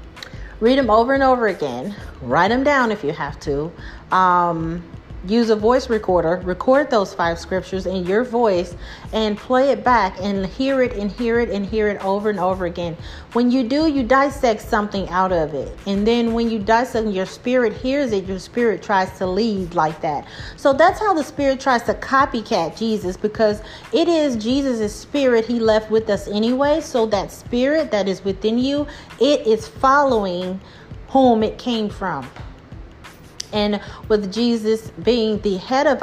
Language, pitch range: English, 185-245 Hz